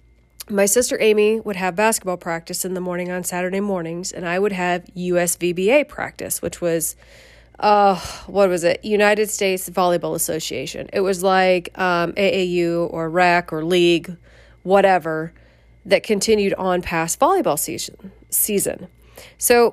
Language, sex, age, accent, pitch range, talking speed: English, female, 30-49, American, 170-220 Hz, 140 wpm